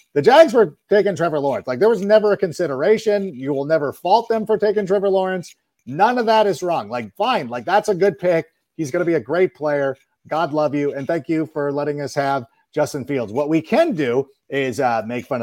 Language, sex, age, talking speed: English, male, 40-59, 235 wpm